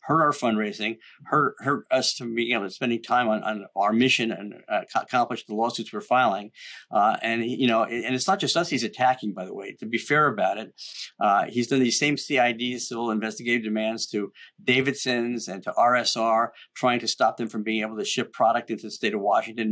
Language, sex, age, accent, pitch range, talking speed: English, male, 50-69, American, 110-125 Hz, 220 wpm